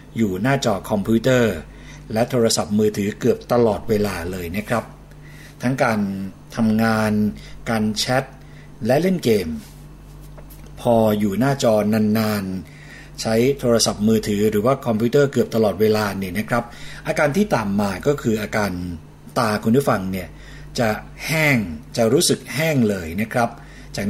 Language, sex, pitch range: Thai, male, 110-145 Hz